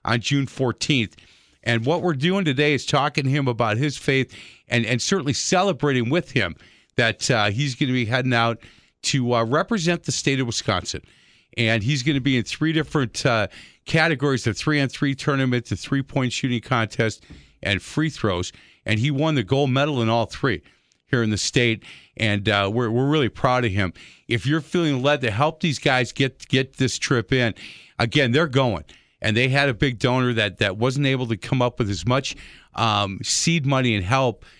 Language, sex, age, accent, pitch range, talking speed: English, male, 50-69, American, 110-140 Hz, 200 wpm